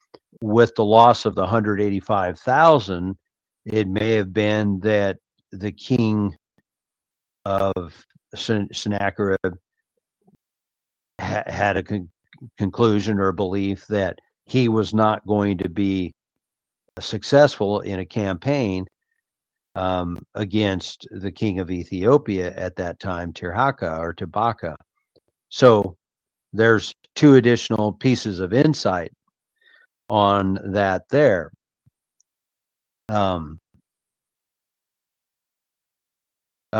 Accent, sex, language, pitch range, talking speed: American, male, English, 95-120 Hz, 95 wpm